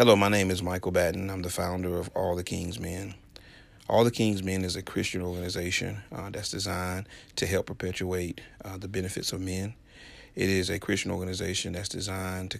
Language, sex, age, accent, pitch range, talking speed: English, male, 40-59, American, 90-100 Hz, 195 wpm